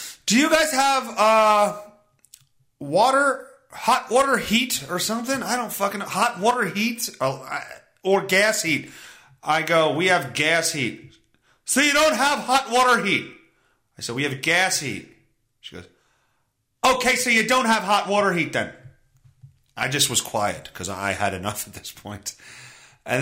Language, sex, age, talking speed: English, male, 30-49, 165 wpm